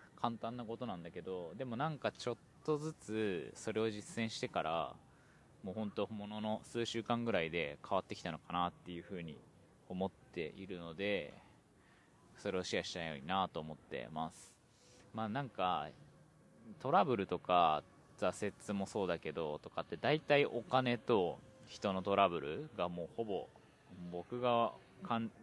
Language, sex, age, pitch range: Japanese, male, 20-39, 90-120 Hz